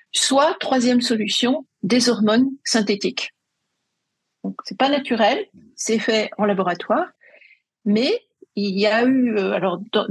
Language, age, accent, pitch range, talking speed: French, 50-69, French, 200-245 Hz, 125 wpm